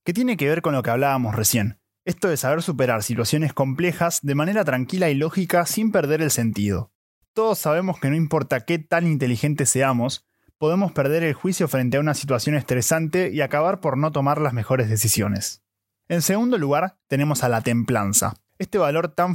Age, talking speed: 20-39, 185 wpm